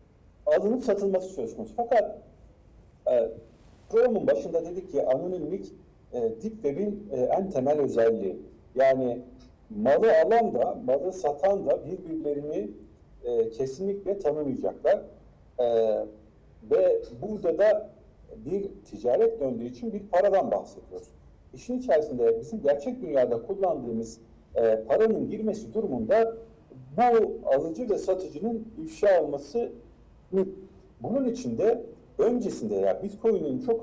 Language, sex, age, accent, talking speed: Turkish, male, 60-79, native, 110 wpm